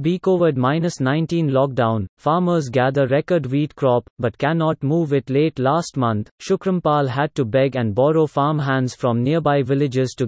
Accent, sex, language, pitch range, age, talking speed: Indian, male, English, 125-155 Hz, 30-49, 150 wpm